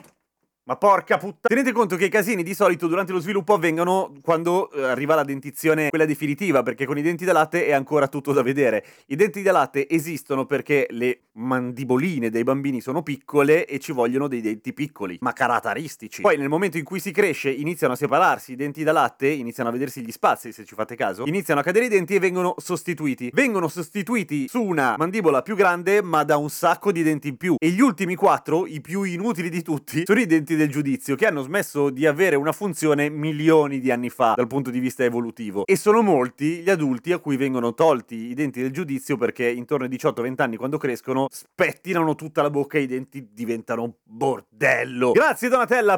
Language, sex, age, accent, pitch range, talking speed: Italian, male, 30-49, native, 135-195 Hz, 210 wpm